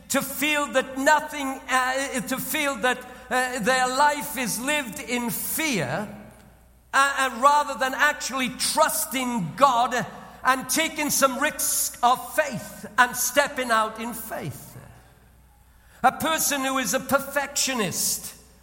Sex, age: male, 50-69